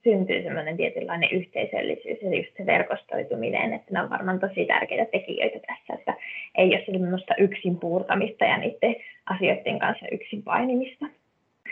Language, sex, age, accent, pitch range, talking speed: Finnish, female, 20-39, native, 185-245 Hz, 140 wpm